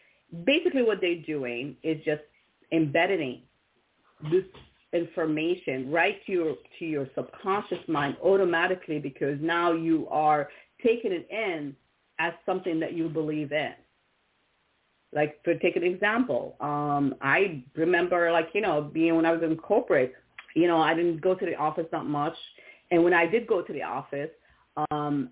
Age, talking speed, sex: 40-59, 155 wpm, female